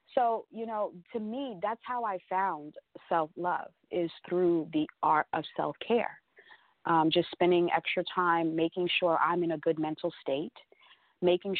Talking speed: 150 wpm